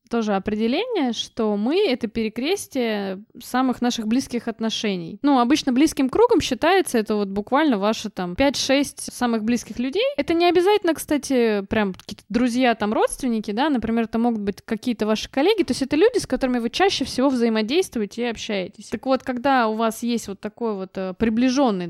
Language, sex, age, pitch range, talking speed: Russian, female, 20-39, 220-275 Hz, 175 wpm